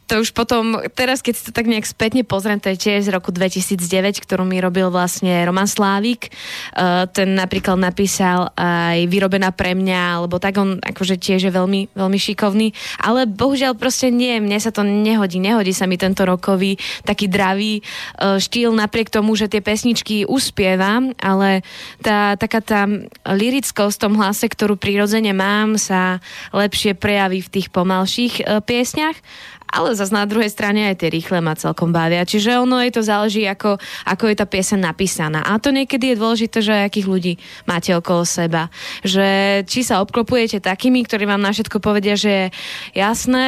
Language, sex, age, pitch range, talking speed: Slovak, female, 20-39, 195-230 Hz, 170 wpm